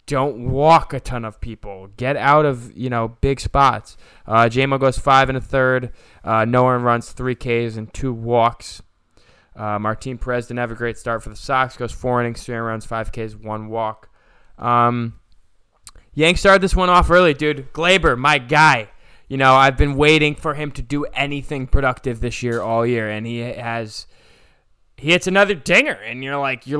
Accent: American